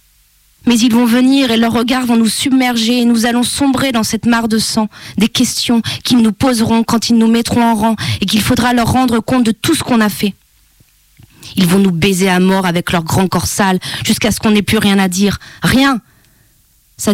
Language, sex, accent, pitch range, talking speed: French, female, French, 195-245 Hz, 220 wpm